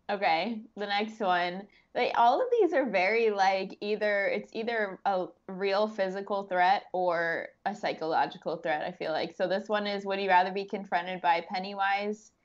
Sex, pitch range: female, 180-225 Hz